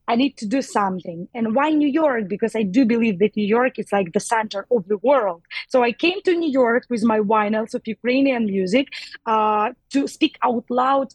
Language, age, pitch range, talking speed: English, 20-39, 200-255 Hz, 215 wpm